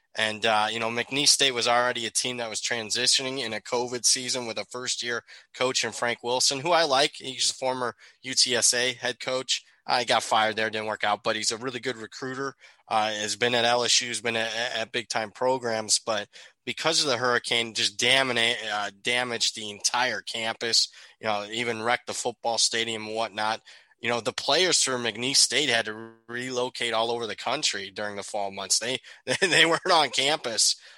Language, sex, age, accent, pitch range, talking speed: English, male, 20-39, American, 110-125 Hz, 200 wpm